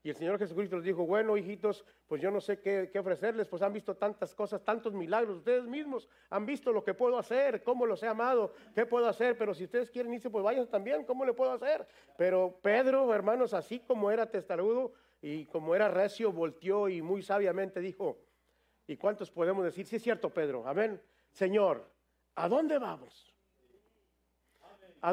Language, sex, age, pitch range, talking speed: English, male, 50-69, 180-240 Hz, 190 wpm